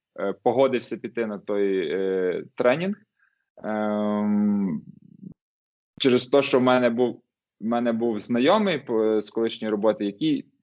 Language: Russian